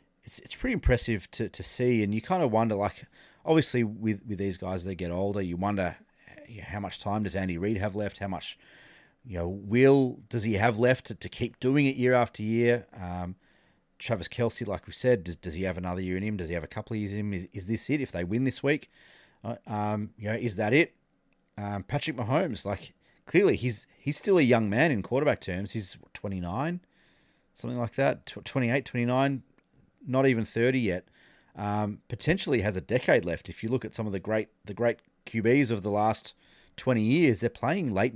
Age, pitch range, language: 30-49, 100-125 Hz, English